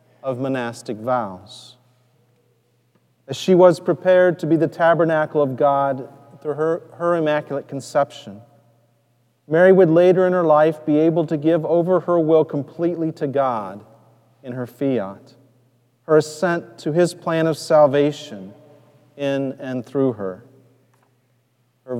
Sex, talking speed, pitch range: male, 135 wpm, 120-160 Hz